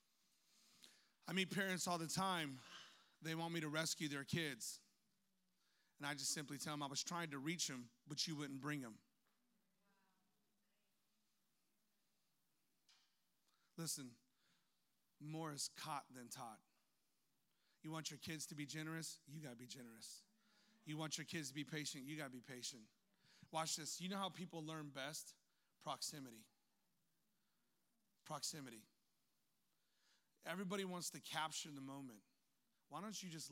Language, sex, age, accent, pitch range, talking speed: English, male, 30-49, American, 140-180 Hz, 145 wpm